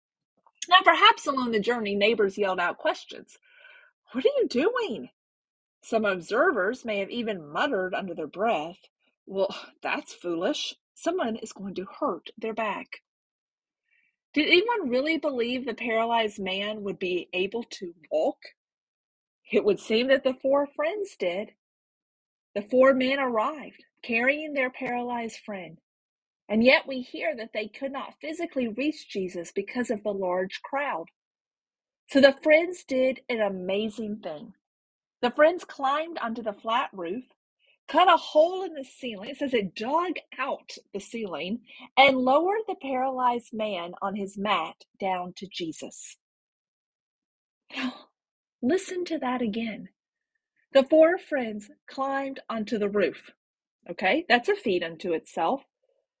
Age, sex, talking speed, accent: 40-59, female, 140 wpm, American